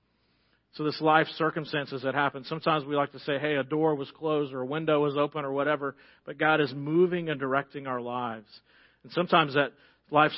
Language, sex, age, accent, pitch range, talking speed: English, male, 40-59, American, 140-170 Hz, 200 wpm